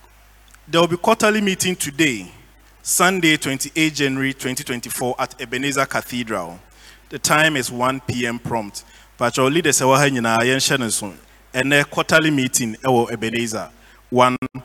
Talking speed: 120 wpm